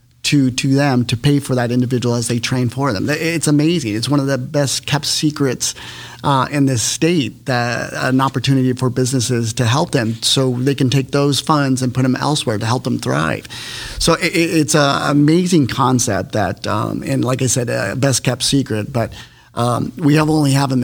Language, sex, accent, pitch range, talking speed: English, male, American, 110-135 Hz, 205 wpm